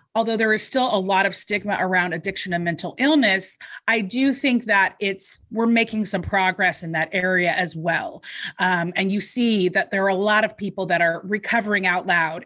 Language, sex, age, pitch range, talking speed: English, female, 30-49, 185-230 Hz, 205 wpm